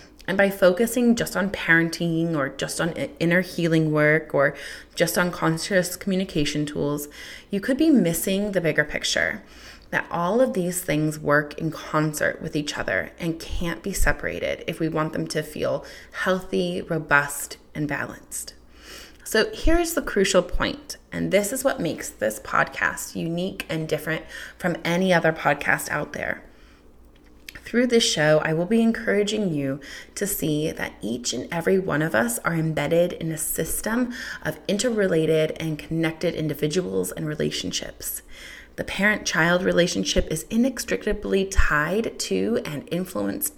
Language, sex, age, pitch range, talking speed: English, female, 20-39, 150-195 Hz, 150 wpm